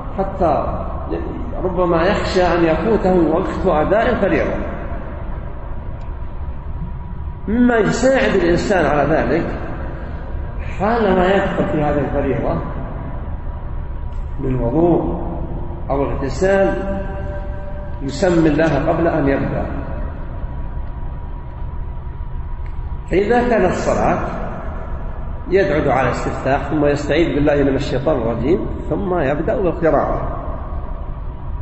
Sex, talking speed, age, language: male, 80 wpm, 50-69, English